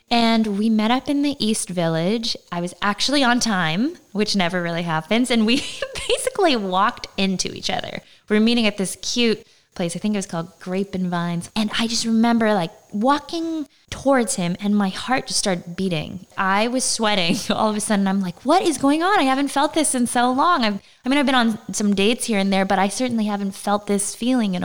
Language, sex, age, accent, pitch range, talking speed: English, female, 20-39, American, 185-235 Hz, 220 wpm